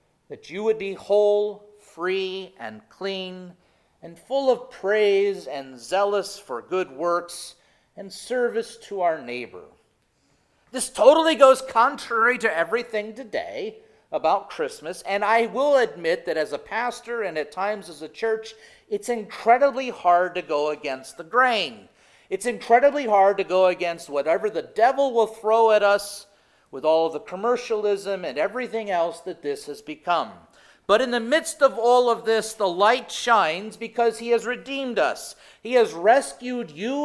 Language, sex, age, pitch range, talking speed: English, male, 40-59, 175-240 Hz, 155 wpm